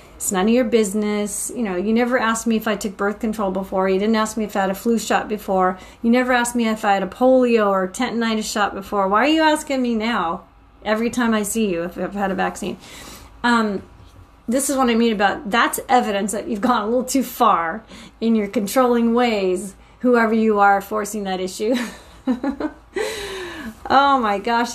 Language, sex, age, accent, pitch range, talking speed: English, female, 30-49, American, 205-255 Hz, 210 wpm